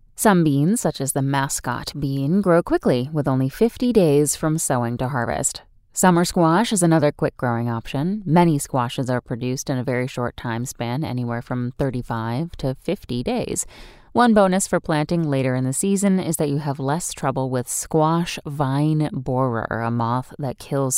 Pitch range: 130-165 Hz